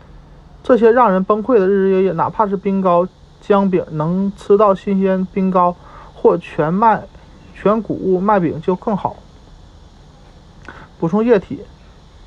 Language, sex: Chinese, male